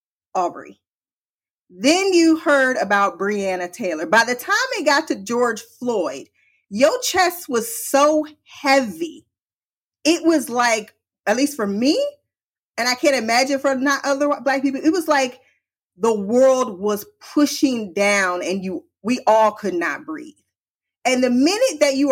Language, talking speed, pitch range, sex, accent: English, 150 wpm, 225-315 Hz, female, American